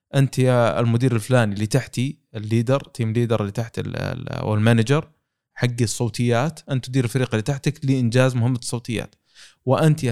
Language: Arabic